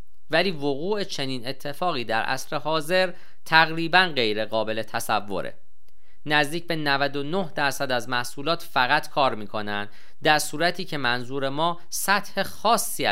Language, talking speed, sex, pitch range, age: Persian, 120 wpm, male, 110-145 Hz, 40-59